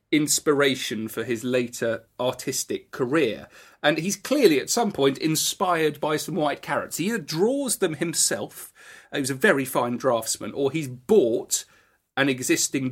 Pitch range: 130-190 Hz